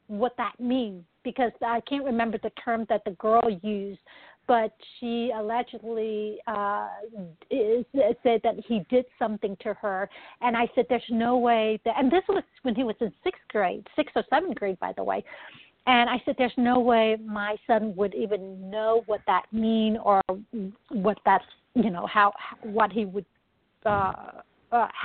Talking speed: 175 wpm